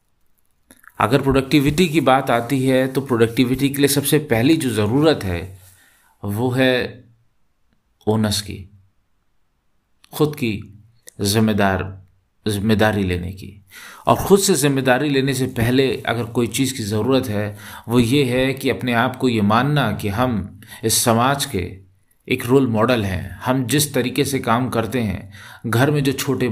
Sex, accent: male, native